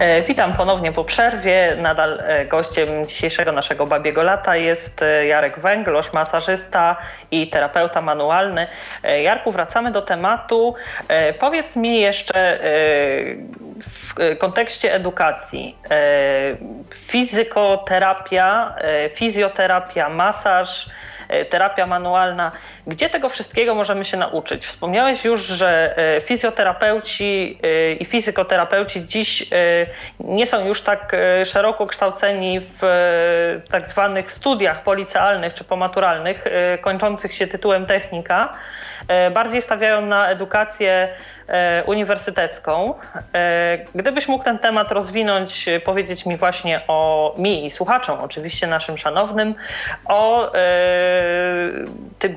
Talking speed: 95 wpm